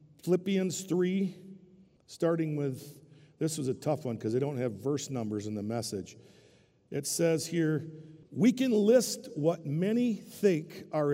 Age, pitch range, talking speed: 50-69, 140-190 Hz, 150 wpm